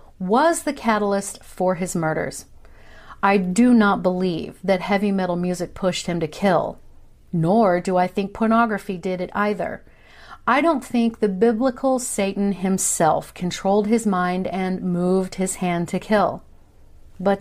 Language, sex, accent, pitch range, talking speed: English, female, American, 180-215 Hz, 150 wpm